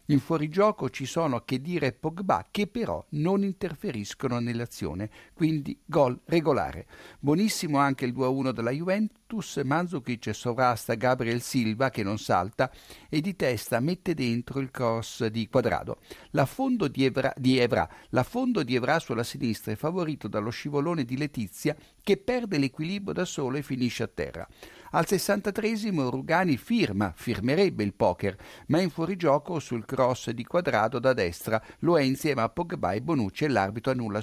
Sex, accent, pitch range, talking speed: male, native, 120-170 Hz, 160 wpm